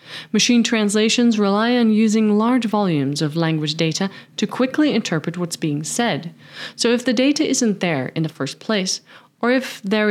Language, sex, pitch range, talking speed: English, female, 160-230 Hz, 170 wpm